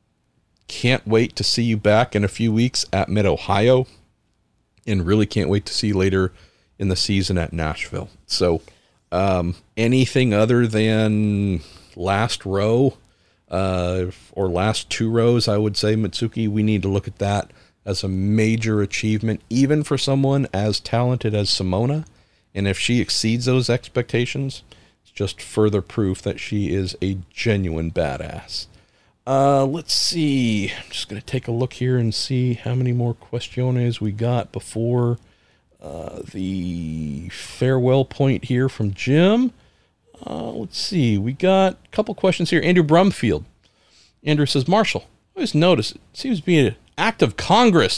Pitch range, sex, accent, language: 100-130 Hz, male, American, English